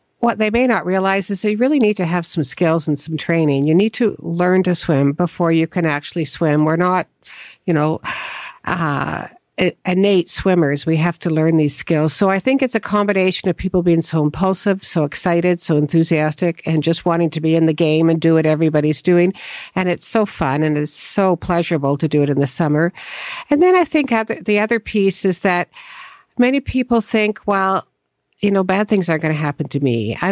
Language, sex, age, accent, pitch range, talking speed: English, female, 60-79, American, 155-190 Hz, 210 wpm